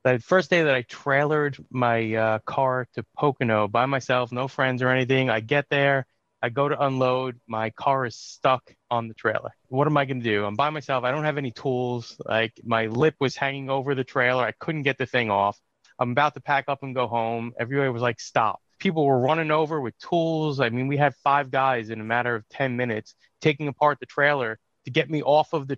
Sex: male